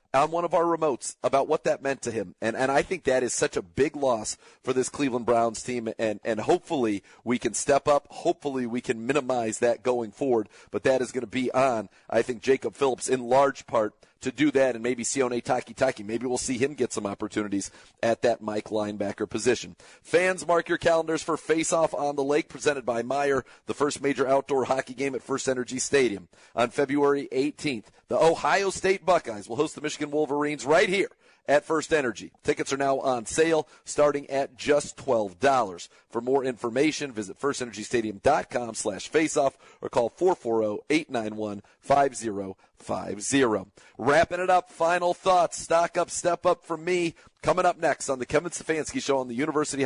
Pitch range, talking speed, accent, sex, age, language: 120-155 Hz, 190 wpm, American, male, 40-59, English